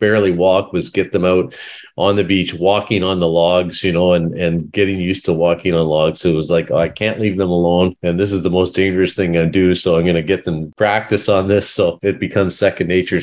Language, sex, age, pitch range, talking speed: English, male, 30-49, 85-105 Hz, 250 wpm